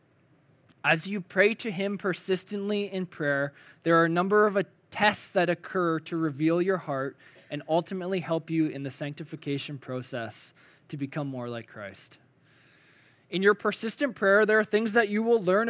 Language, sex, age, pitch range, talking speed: English, male, 20-39, 140-185 Hz, 170 wpm